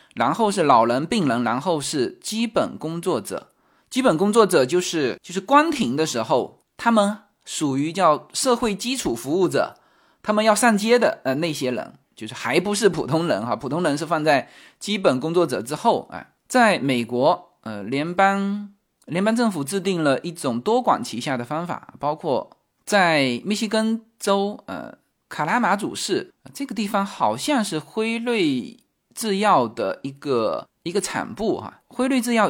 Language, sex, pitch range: Chinese, male, 140-220 Hz